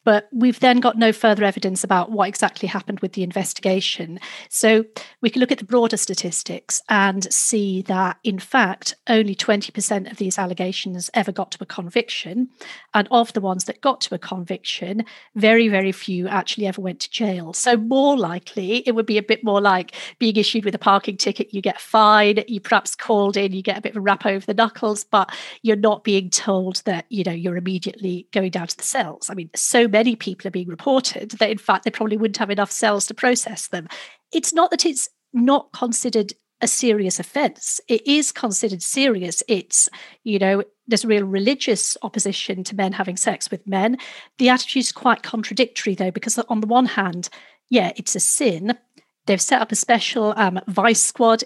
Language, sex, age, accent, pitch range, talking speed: English, female, 40-59, British, 195-230 Hz, 200 wpm